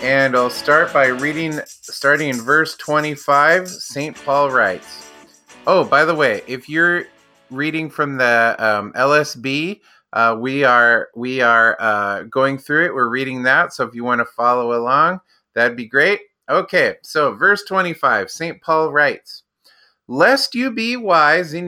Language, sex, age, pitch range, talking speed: English, male, 30-49, 130-180 Hz, 160 wpm